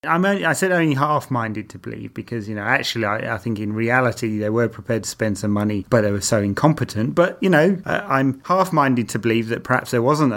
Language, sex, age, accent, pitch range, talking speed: English, male, 30-49, British, 105-135 Hz, 220 wpm